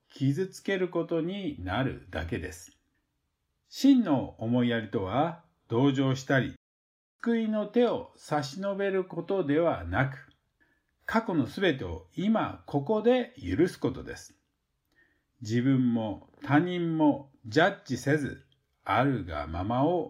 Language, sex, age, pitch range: Japanese, male, 50-69, 115-190 Hz